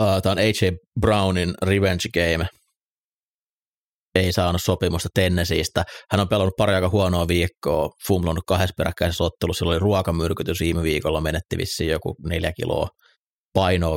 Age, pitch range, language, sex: 30-49, 85-95 Hz, Finnish, male